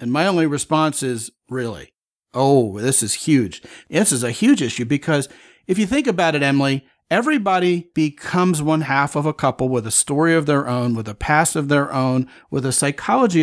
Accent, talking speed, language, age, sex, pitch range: American, 195 wpm, English, 40-59, male, 130-155 Hz